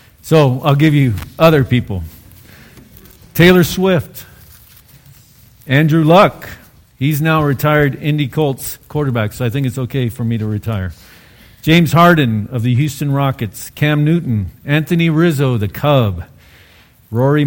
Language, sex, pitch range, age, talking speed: English, male, 115-150 Hz, 50-69, 135 wpm